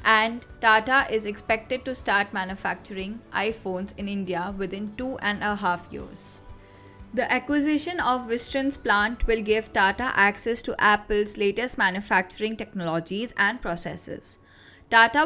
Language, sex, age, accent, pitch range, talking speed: English, female, 20-39, Indian, 190-235 Hz, 130 wpm